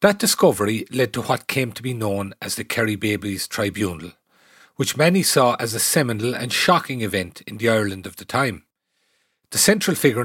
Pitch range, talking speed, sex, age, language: 110-145 Hz, 185 wpm, male, 40-59, English